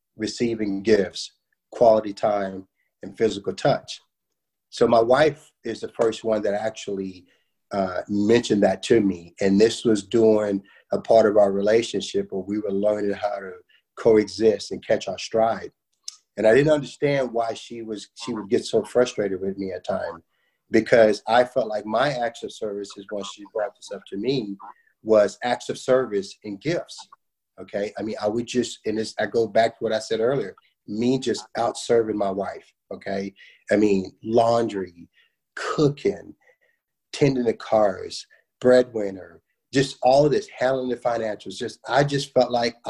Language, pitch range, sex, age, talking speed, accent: English, 105-130 Hz, male, 30-49, 170 wpm, American